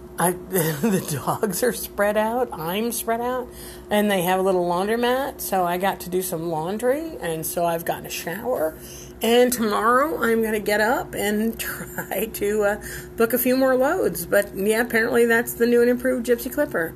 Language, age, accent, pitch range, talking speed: English, 40-59, American, 180-230 Hz, 190 wpm